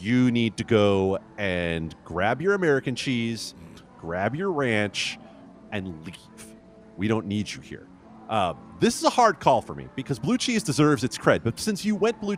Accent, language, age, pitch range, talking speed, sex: American, English, 30-49, 105-160 Hz, 185 wpm, male